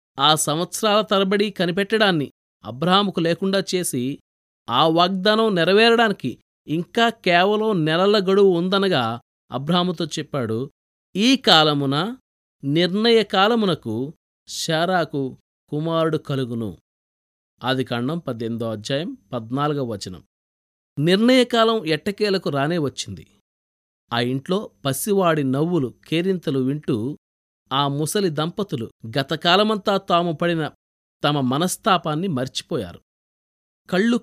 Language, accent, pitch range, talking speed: Telugu, native, 130-200 Hz, 85 wpm